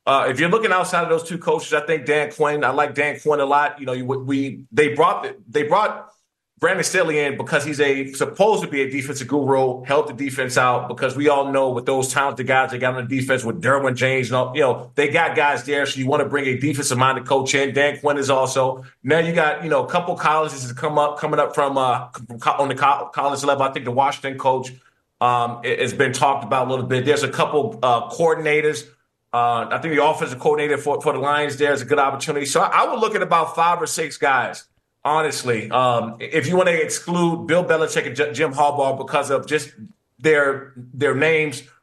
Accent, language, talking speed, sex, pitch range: American, English, 240 wpm, male, 135-155 Hz